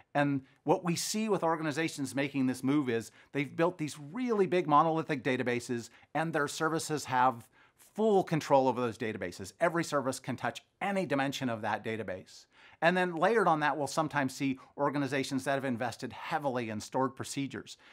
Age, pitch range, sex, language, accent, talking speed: 40-59, 125-155 Hz, male, English, American, 170 wpm